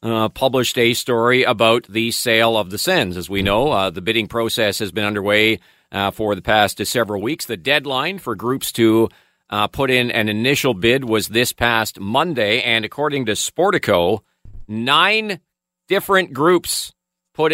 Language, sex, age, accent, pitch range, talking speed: English, male, 40-59, American, 105-130 Hz, 170 wpm